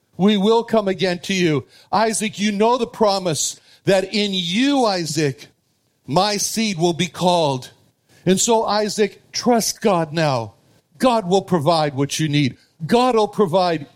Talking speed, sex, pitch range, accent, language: 150 wpm, male, 145-215 Hz, American, English